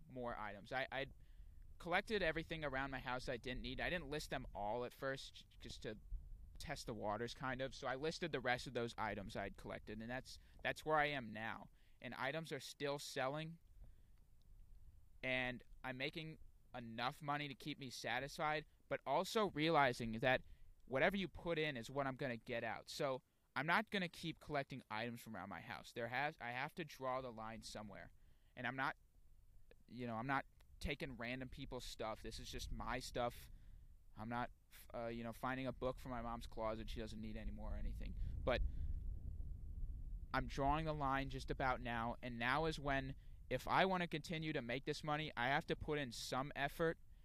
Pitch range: 110-140 Hz